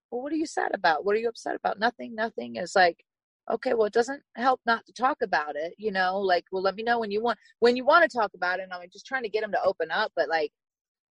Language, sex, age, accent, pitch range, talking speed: English, female, 30-49, American, 175-255 Hz, 290 wpm